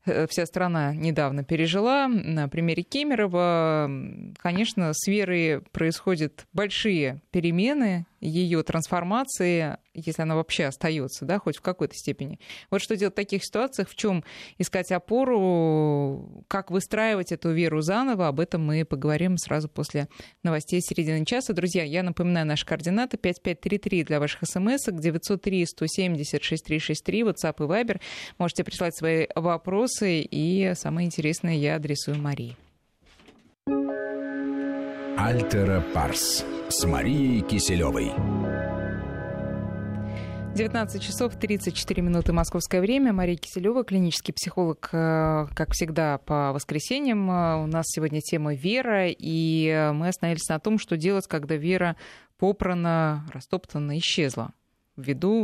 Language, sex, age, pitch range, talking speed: Russian, female, 20-39, 150-190 Hz, 115 wpm